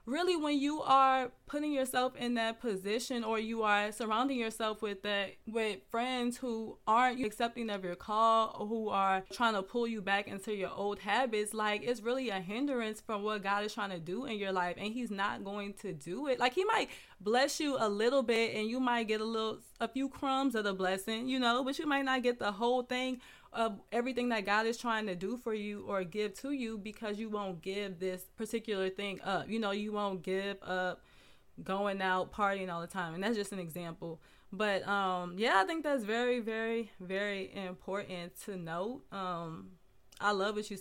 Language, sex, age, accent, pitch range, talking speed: English, female, 20-39, American, 195-235 Hz, 210 wpm